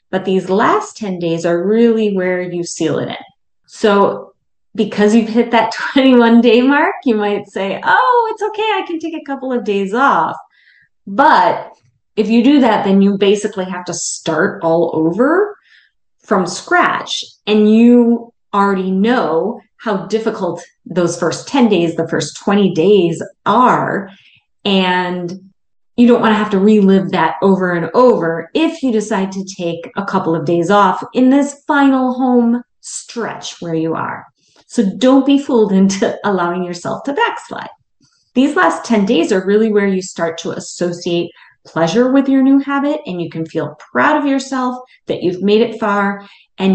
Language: English